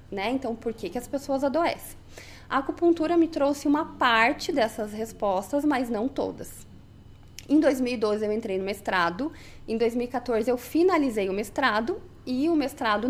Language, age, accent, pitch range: Portuguese, 20-39, Brazilian, 215-290 Hz